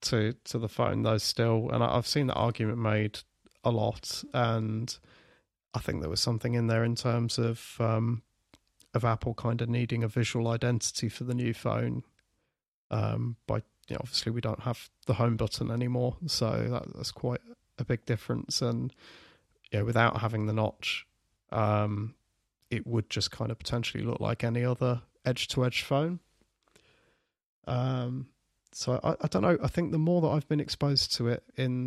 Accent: British